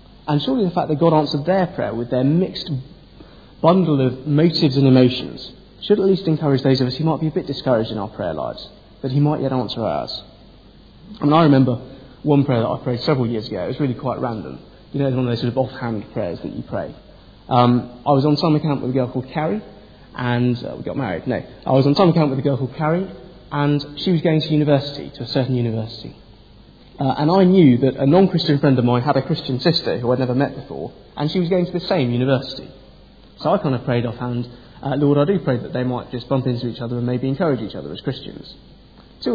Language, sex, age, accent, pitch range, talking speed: English, male, 30-49, British, 125-155 Hz, 245 wpm